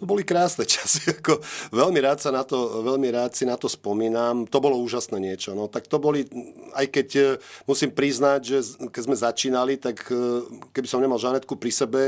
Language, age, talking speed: Slovak, 40-59, 190 wpm